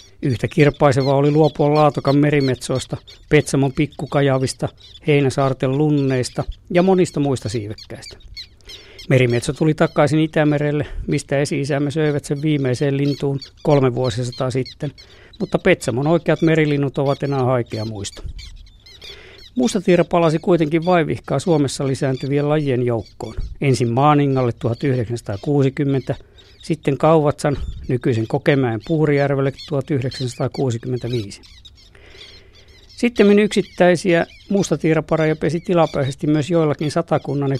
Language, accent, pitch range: Finnish, native, 120-150 Hz